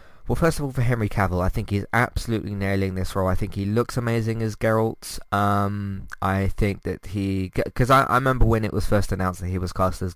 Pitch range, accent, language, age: 95-115 Hz, British, English, 20-39